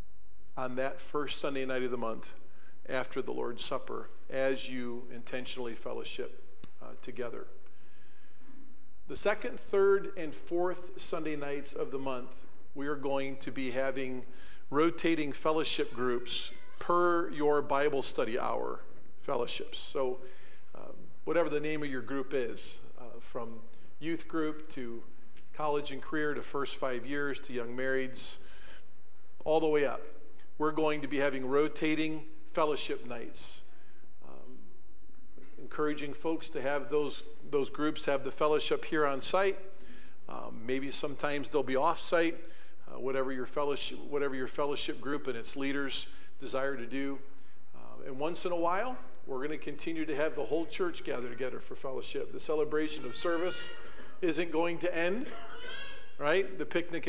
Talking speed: 150 wpm